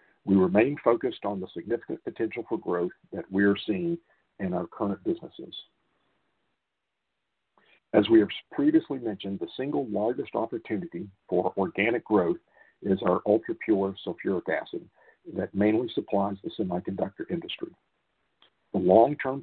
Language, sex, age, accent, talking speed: English, male, 50-69, American, 125 wpm